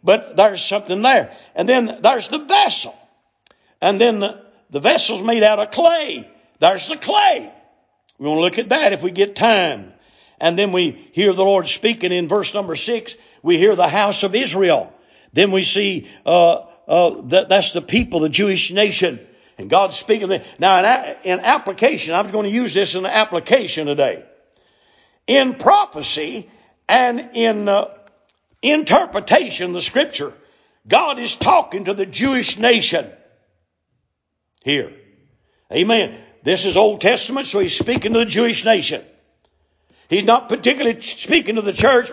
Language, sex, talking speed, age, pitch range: English, male, 160 wpm, 60-79, 195-255 Hz